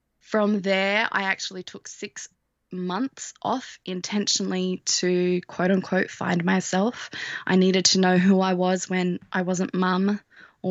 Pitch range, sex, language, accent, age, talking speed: 180-205 Hz, female, English, Australian, 20-39, 140 wpm